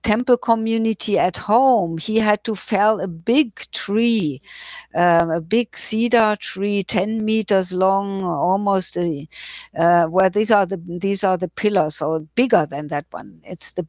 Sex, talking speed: female, 145 wpm